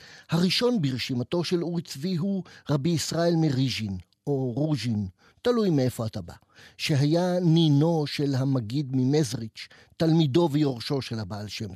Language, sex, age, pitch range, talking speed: Hebrew, male, 50-69, 130-170 Hz, 120 wpm